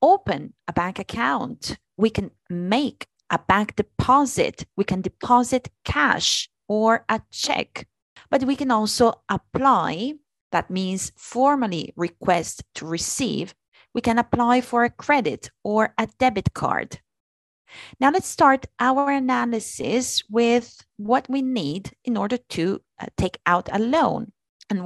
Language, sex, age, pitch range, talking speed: Italian, female, 30-49, 200-265 Hz, 135 wpm